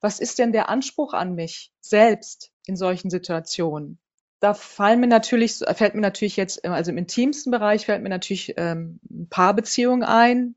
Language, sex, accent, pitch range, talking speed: German, female, German, 190-235 Hz, 170 wpm